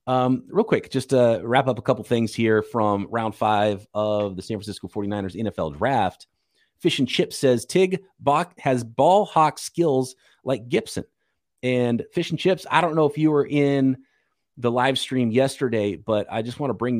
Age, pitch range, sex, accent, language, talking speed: 30-49, 110-145 Hz, male, American, English, 185 wpm